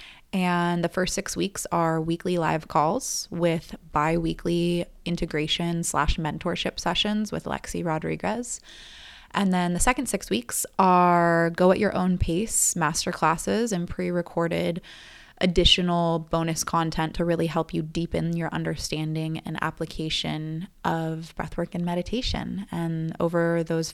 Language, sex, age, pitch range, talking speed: English, female, 20-39, 160-180 Hz, 130 wpm